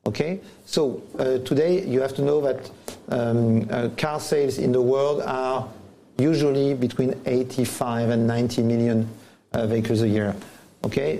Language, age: German, 50-69